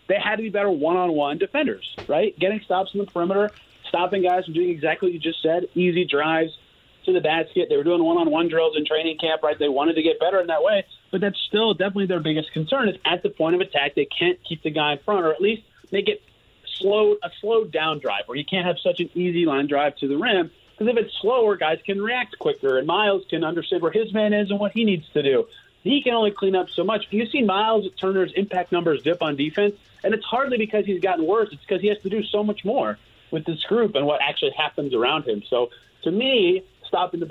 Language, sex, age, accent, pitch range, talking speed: English, male, 30-49, American, 160-210 Hz, 250 wpm